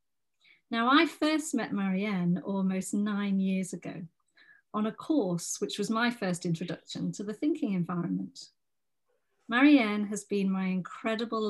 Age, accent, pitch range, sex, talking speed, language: 40-59, British, 185-245 Hz, female, 135 wpm, English